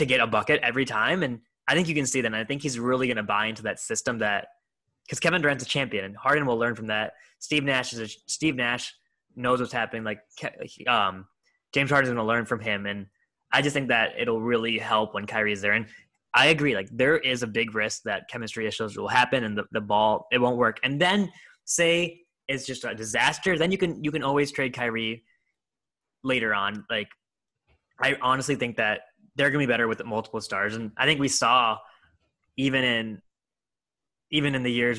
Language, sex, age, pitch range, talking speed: English, male, 10-29, 110-135 Hz, 220 wpm